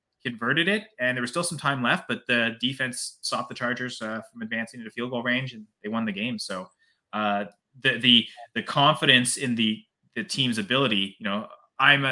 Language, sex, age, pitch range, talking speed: English, male, 20-39, 115-140 Hz, 205 wpm